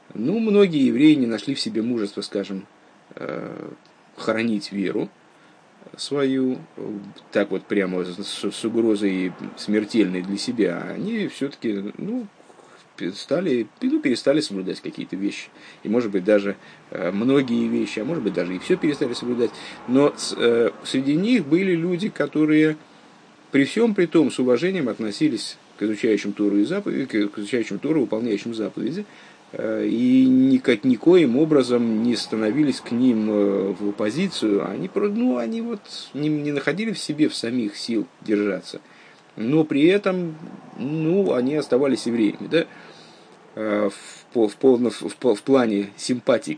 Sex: male